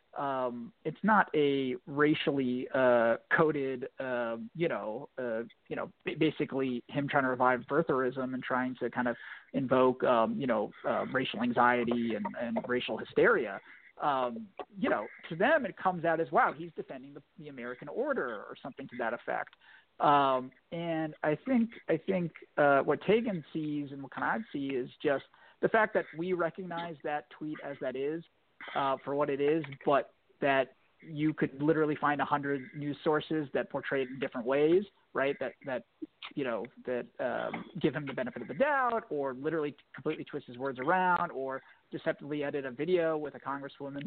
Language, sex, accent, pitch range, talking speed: English, male, American, 130-165 Hz, 180 wpm